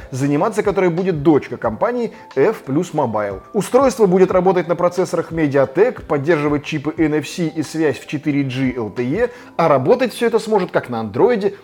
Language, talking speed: Russian, 150 wpm